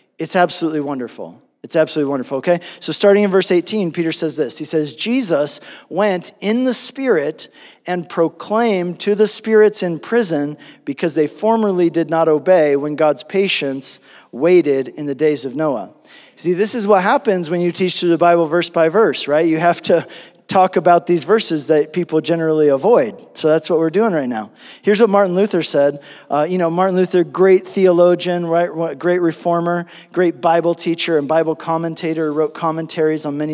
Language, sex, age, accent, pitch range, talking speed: English, male, 40-59, American, 155-185 Hz, 180 wpm